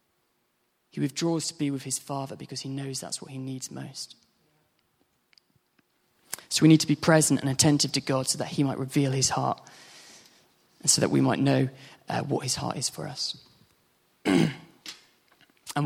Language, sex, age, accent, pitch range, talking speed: English, male, 20-39, British, 135-150 Hz, 175 wpm